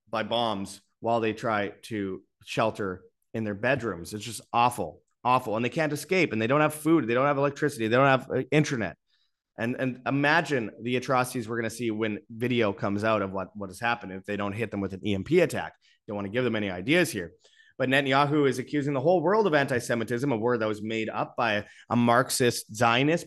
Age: 30-49